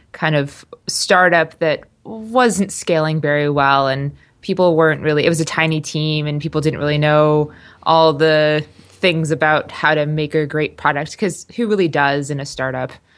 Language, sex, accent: English, female, American